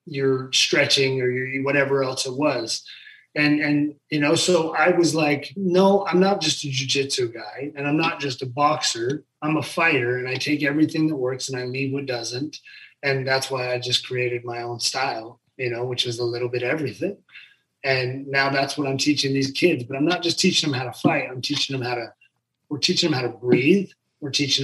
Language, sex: English, male